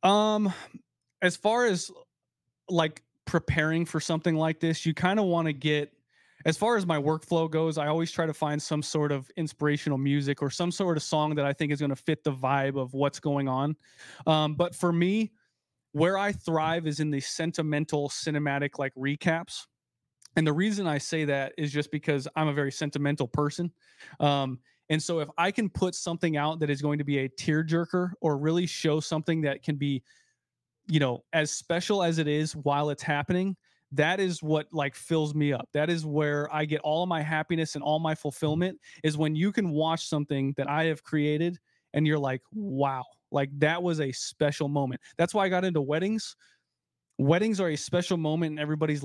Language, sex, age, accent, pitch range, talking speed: English, male, 20-39, American, 145-170 Hz, 200 wpm